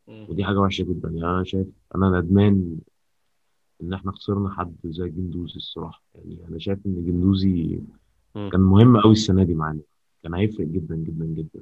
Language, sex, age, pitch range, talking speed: Arabic, male, 30-49, 90-110 Hz, 165 wpm